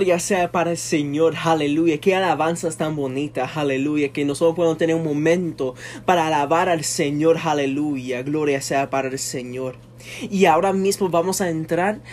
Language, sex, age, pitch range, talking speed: Spanish, male, 20-39, 170-245 Hz, 165 wpm